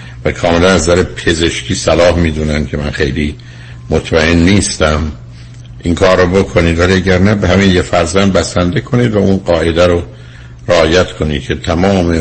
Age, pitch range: 60-79, 75-90 Hz